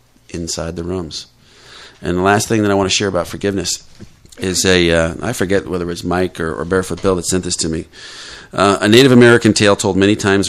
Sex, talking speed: male, 230 wpm